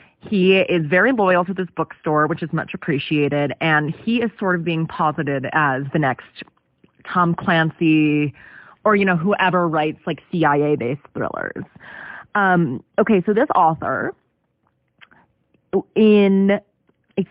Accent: American